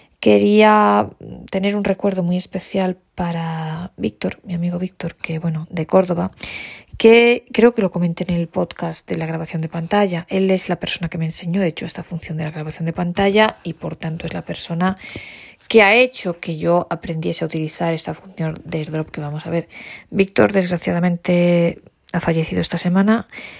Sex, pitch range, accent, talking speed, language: female, 160-190 Hz, Spanish, 185 wpm, Spanish